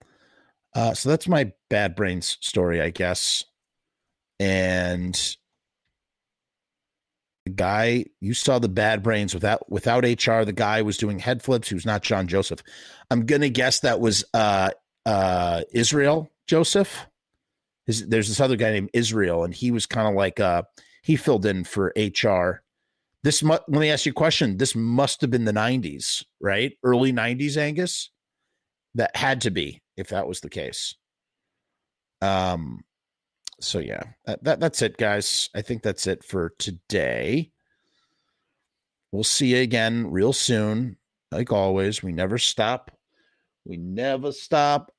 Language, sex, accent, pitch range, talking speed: English, male, American, 95-135 Hz, 150 wpm